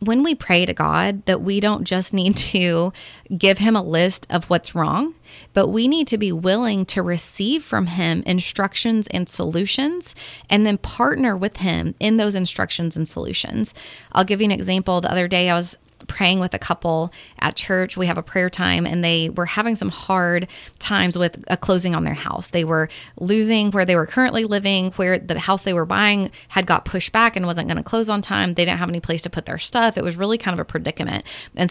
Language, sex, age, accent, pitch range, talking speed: English, female, 20-39, American, 170-205 Hz, 220 wpm